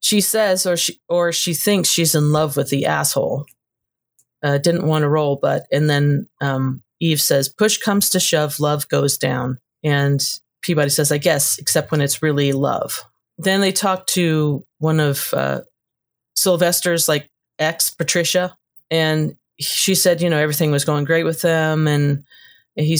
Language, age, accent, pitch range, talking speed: English, 40-59, American, 140-170 Hz, 170 wpm